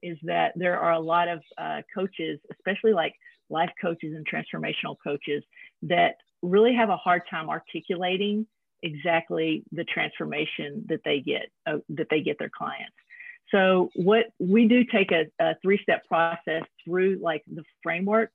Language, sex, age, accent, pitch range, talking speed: English, female, 40-59, American, 160-200 Hz, 155 wpm